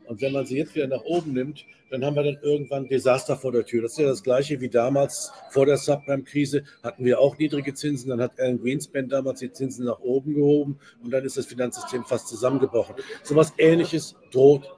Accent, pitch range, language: German, 125-150 Hz, German